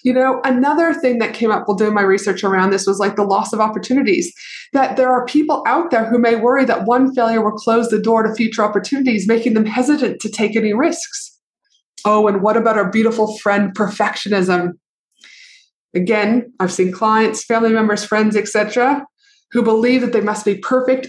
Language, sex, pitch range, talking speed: English, female, 205-255 Hz, 195 wpm